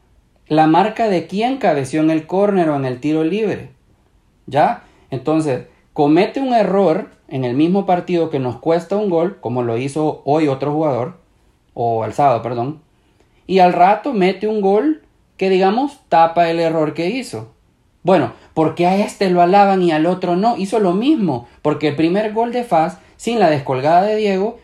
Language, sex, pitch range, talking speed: Spanish, male, 140-190 Hz, 185 wpm